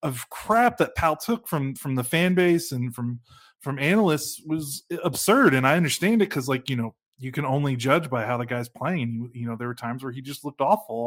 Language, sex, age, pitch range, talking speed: English, male, 30-49, 125-150 Hz, 240 wpm